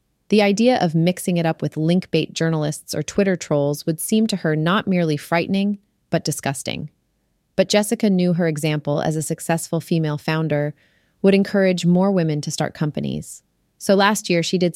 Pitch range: 150-185 Hz